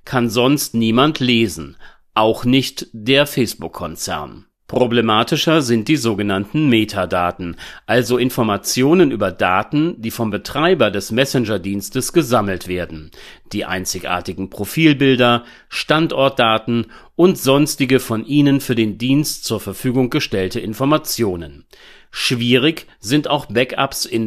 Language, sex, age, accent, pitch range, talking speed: German, male, 40-59, German, 105-140 Hz, 110 wpm